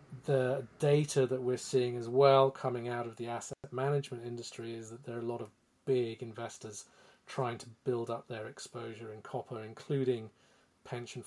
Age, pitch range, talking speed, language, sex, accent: 40-59, 120-135 Hz, 175 wpm, English, male, British